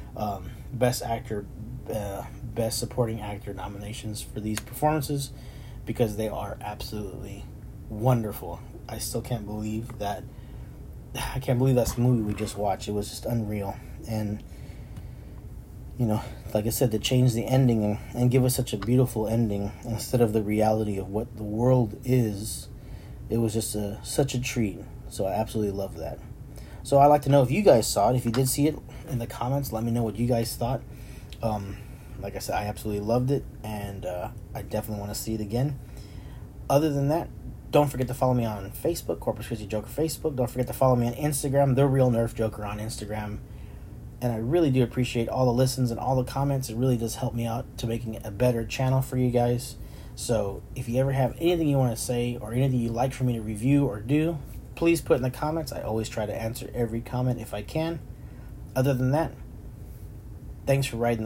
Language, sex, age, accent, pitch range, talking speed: English, male, 30-49, American, 105-130 Hz, 205 wpm